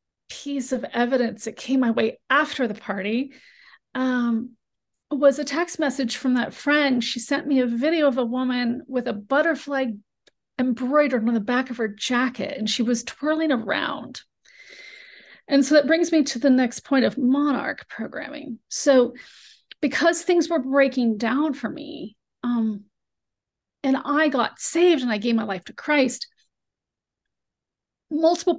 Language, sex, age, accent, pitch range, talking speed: English, female, 40-59, American, 230-285 Hz, 155 wpm